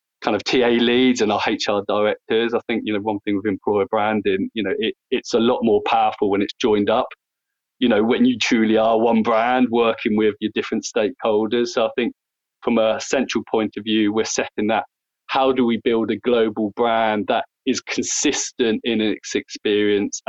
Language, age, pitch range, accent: English, 20-39, 105-120 Hz, British